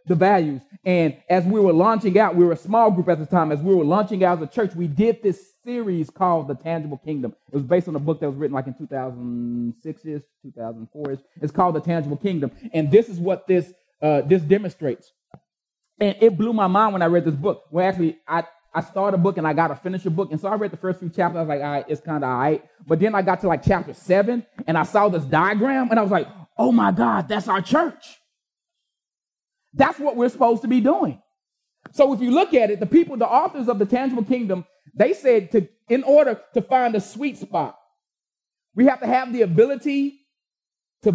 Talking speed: 235 wpm